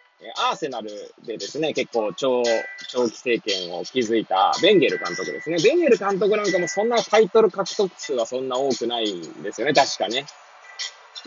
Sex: male